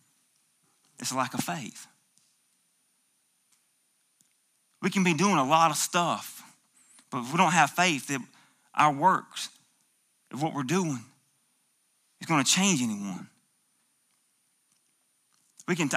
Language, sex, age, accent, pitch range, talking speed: English, male, 30-49, American, 160-240 Hz, 125 wpm